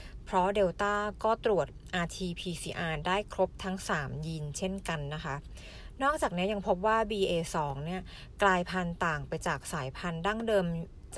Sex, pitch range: female, 170-205 Hz